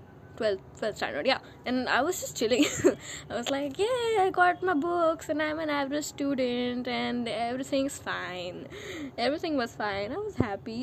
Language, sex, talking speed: English, female, 170 wpm